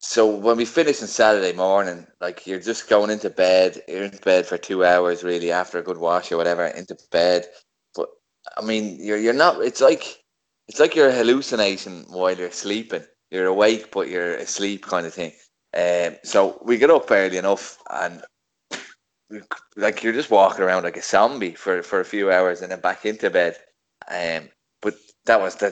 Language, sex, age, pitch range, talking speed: English, male, 20-39, 90-110 Hz, 190 wpm